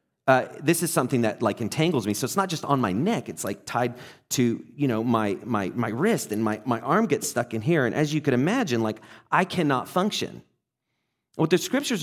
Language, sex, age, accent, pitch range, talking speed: English, male, 30-49, American, 120-170 Hz, 225 wpm